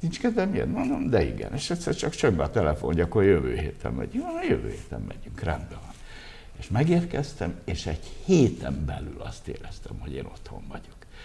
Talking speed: 175 wpm